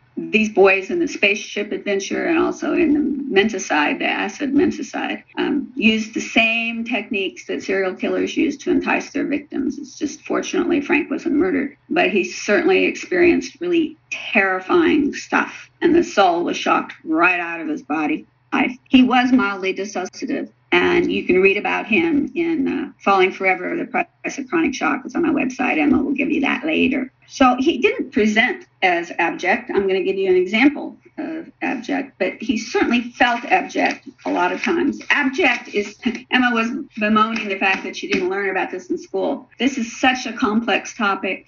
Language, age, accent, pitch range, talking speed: English, 50-69, American, 215-320 Hz, 180 wpm